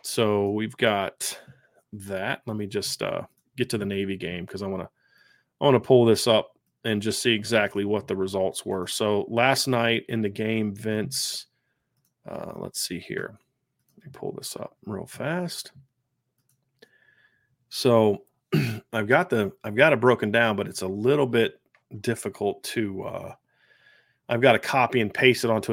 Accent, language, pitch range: American, English, 105-125 Hz